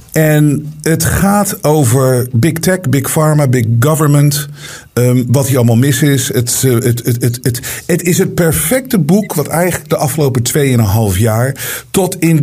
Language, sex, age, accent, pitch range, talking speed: Dutch, male, 50-69, Dutch, 115-155 Hz, 170 wpm